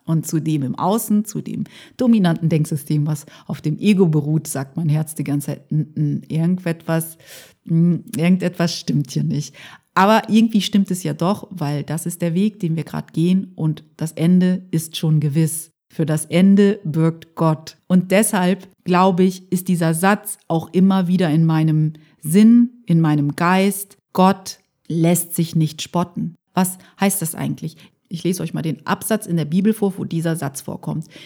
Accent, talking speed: German, 175 wpm